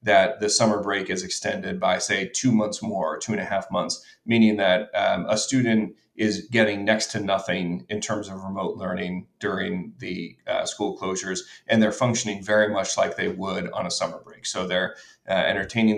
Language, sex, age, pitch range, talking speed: English, male, 30-49, 95-110 Hz, 195 wpm